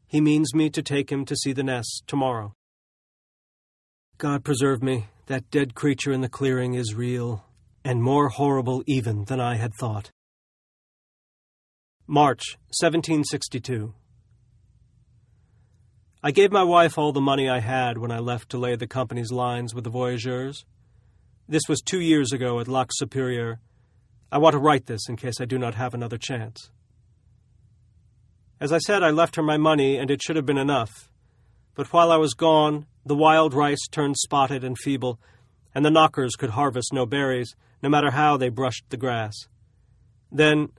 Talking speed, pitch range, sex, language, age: 170 wpm, 115-145 Hz, male, English, 40-59